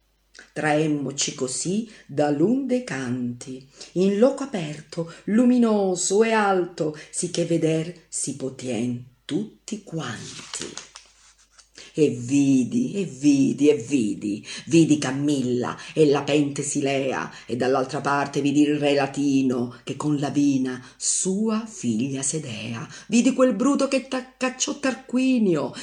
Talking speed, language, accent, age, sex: 120 wpm, Italian, native, 50-69, female